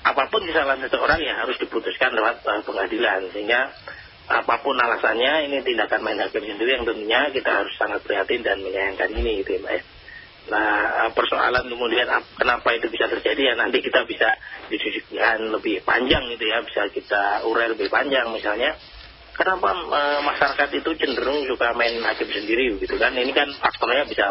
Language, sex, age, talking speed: Indonesian, male, 30-49, 165 wpm